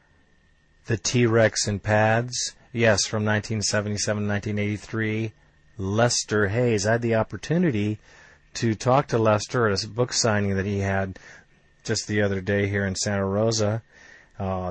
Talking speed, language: 150 wpm, English